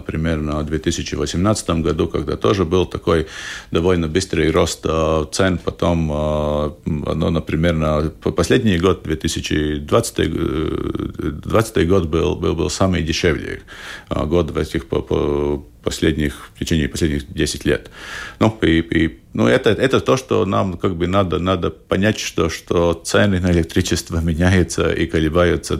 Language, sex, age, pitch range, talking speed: Russian, male, 50-69, 80-95 Hz, 135 wpm